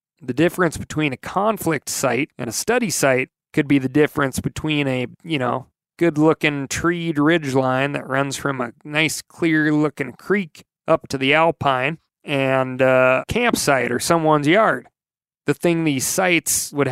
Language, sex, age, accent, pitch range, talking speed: English, male, 30-49, American, 135-165 Hz, 155 wpm